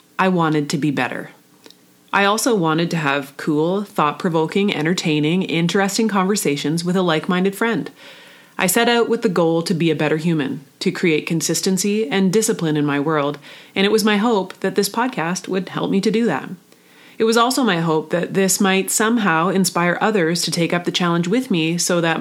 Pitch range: 160-210 Hz